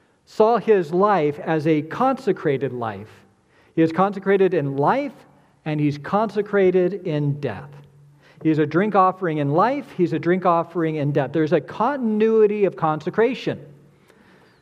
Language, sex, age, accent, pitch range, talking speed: English, male, 40-59, American, 145-190 Hz, 140 wpm